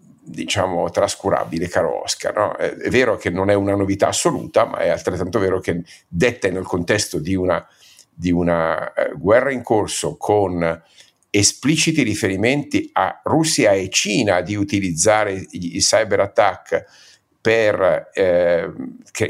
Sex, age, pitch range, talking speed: male, 50-69, 95-130 Hz, 140 wpm